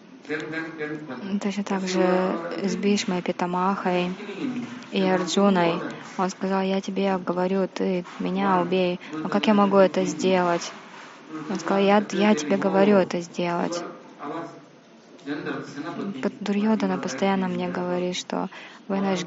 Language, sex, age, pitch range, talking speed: Russian, female, 20-39, 180-205 Hz, 115 wpm